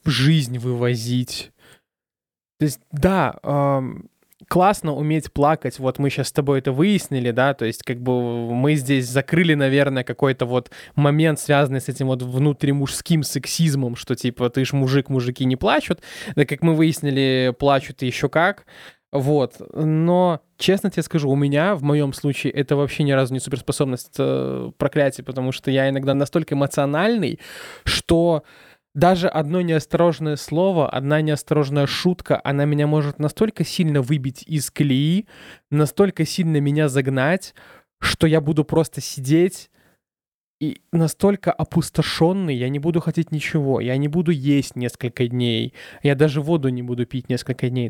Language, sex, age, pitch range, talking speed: Russian, male, 20-39, 135-160 Hz, 150 wpm